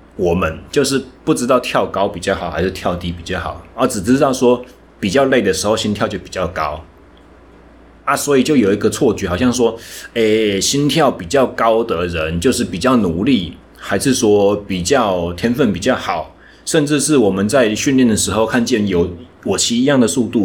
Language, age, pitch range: Chinese, 30-49, 95-125 Hz